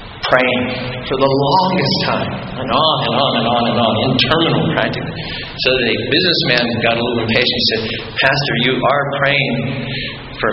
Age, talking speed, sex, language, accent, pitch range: 50-69, 195 wpm, male, English, American, 115-140 Hz